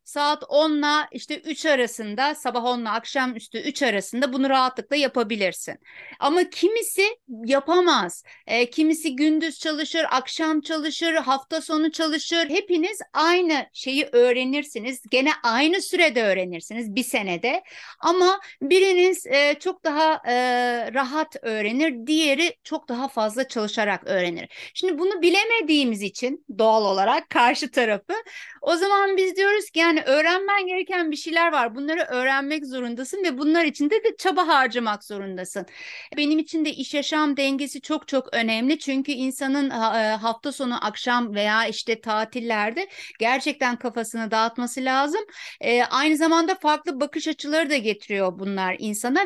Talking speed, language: 135 wpm, Turkish